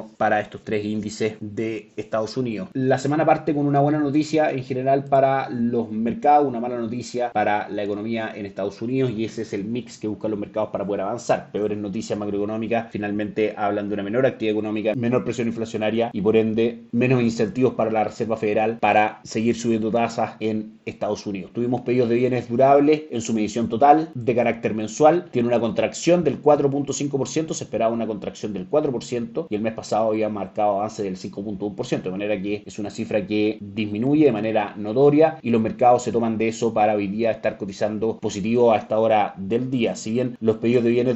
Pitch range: 110-125 Hz